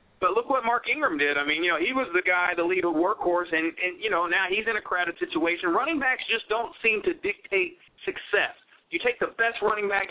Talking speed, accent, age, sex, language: 250 wpm, American, 40-59, male, English